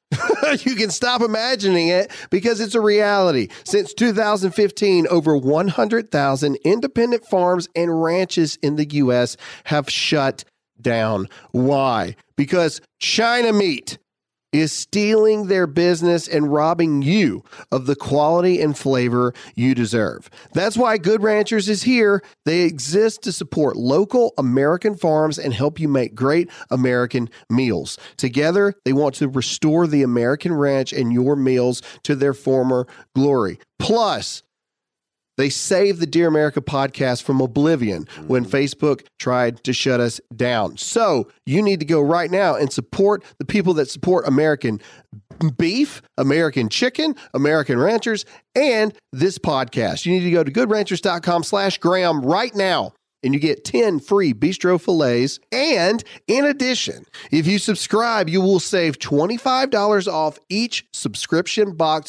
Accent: American